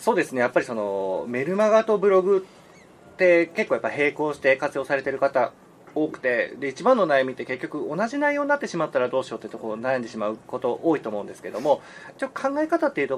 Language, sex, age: Japanese, male, 30-49